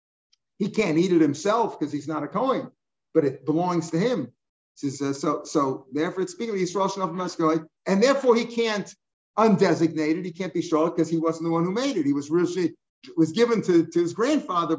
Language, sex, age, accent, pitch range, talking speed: English, male, 50-69, American, 155-200 Hz, 210 wpm